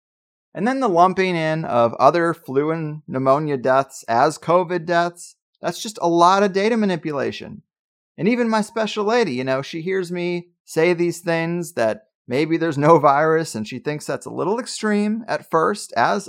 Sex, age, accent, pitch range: male, 30-49, American, 170-215 Hz